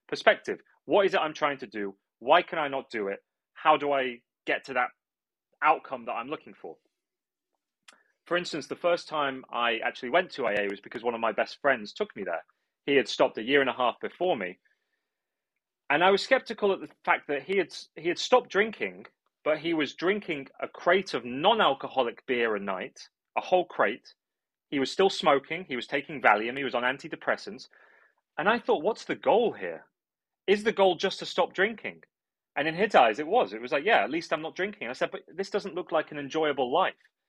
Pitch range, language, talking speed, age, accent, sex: 145-200 Hz, English, 215 wpm, 30-49, British, male